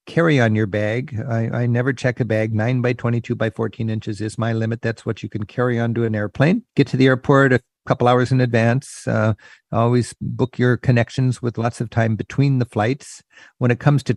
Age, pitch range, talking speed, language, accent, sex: 50-69, 115-135 Hz, 225 wpm, English, American, male